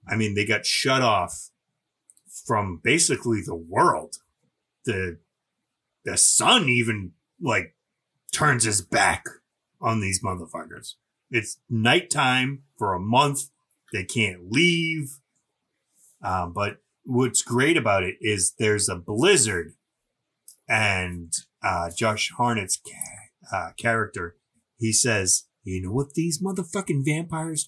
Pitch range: 115-180 Hz